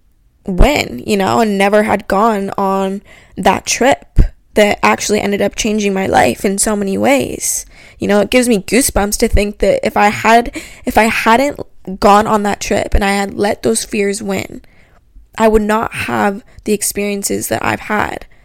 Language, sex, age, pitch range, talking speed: English, female, 10-29, 195-220 Hz, 180 wpm